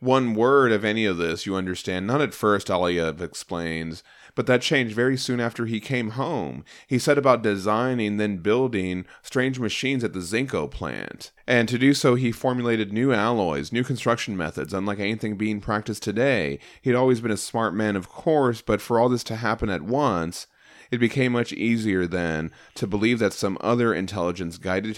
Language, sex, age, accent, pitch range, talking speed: English, male, 30-49, American, 90-120 Hz, 185 wpm